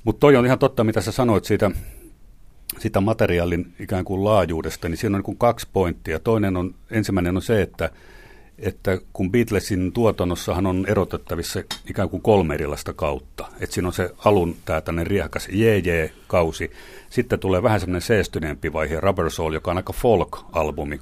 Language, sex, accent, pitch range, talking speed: Finnish, male, native, 80-105 Hz, 170 wpm